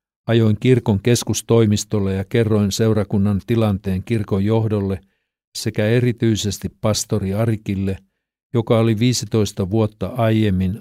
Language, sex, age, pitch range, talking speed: Finnish, male, 50-69, 95-115 Hz, 100 wpm